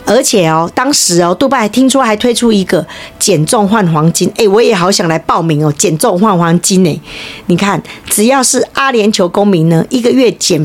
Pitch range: 170-230 Hz